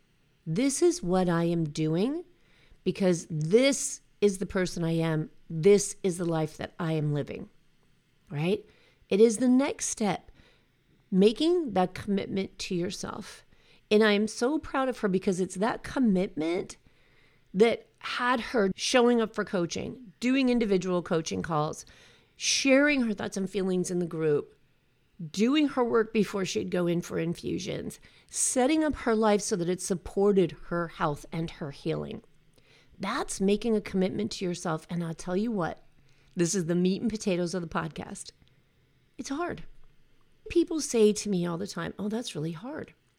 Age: 40-59